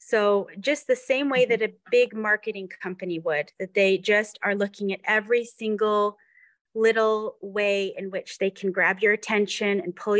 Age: 30-49